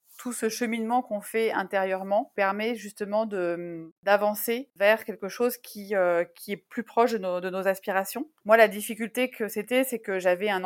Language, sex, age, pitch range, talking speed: French, female, 30-49, 185-225 Hz, 185 wpm